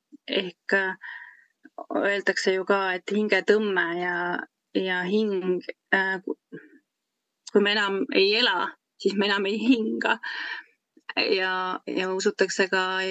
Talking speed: 115 wpm